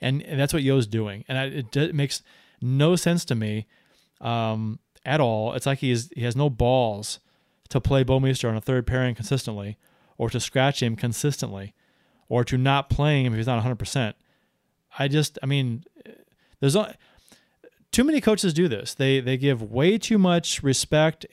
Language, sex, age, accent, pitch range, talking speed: English, male, 30-49, American, 120-150 Hz, 190 wpm